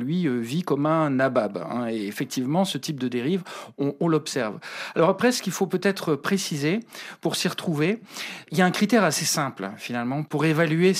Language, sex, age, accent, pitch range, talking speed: French, male, 40-59, French, 135-175 Hz, 195 wpm